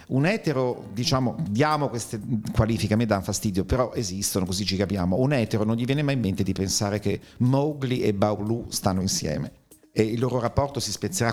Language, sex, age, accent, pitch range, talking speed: Italian, male, 50-69, native, 105-130 Hz, 195 wpm